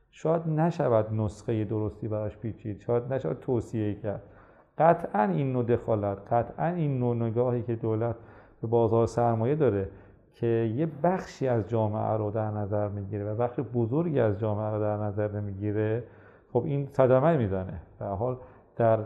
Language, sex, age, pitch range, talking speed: Persian, male, 40-59, 110-140 Hz, 155 wpm